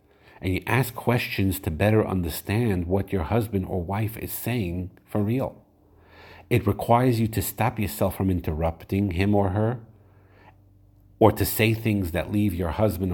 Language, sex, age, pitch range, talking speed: English, male, 50-69, 95-110 Hz, 160 wpm